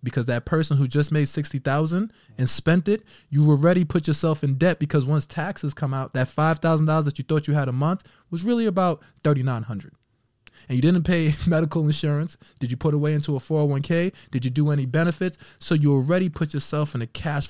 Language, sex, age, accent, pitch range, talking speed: English, male, 20-39, American, 120-155 Hz, 205 wpm